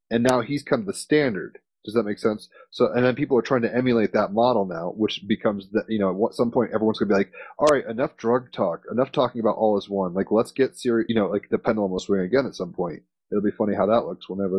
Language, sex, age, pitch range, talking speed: English, male, 30-49, 100-115 Hz, 285 wpm